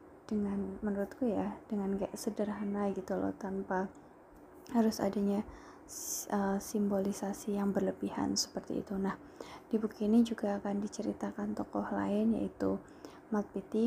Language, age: Indonesian, 20-39